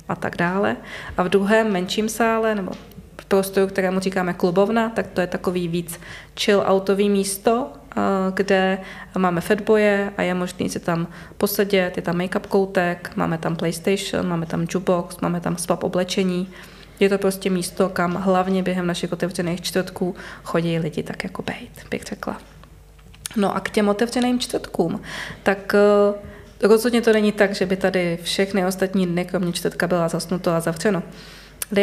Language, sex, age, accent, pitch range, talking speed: Czech, female, 20-39, native, 180-205 Hz, 160 wpm